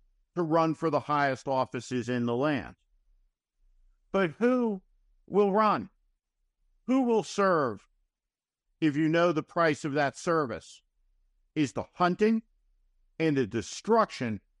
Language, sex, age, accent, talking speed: English, male, 50-69, American, 125 wpm